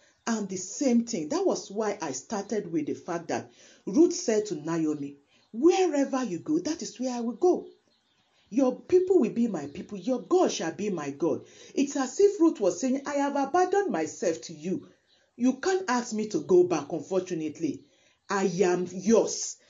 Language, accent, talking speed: English, Nigerian, 185 wpm